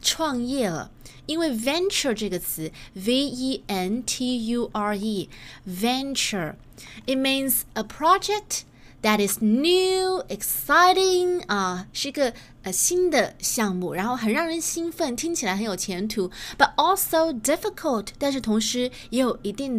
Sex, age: female, 20-39